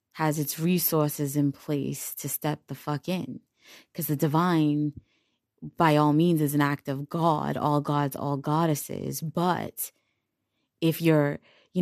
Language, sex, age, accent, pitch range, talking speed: English, female, 20-39, American, 145-170 Hz, 145 wpm